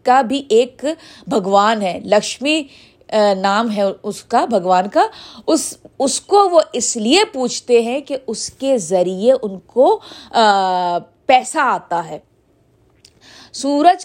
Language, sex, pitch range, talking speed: Urdu, female, 220-310 Hz, 120 wpm